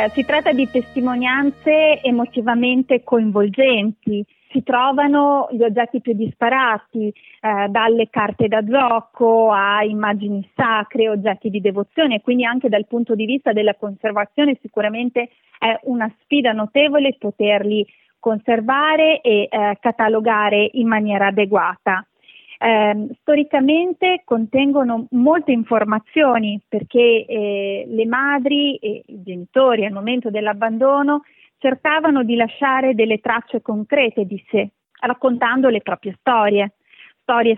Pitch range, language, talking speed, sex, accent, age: 215-265 Hz, Italian, 115 wpm, female, native, 30-49